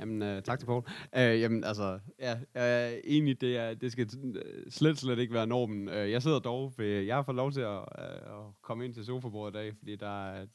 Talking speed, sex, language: 245 wpm, male, Danish